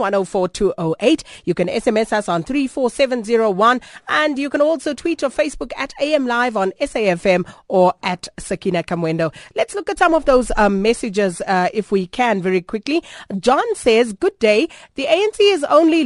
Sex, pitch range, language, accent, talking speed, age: female, 195-280 Hz, English, South African, 215 wpm, 30-49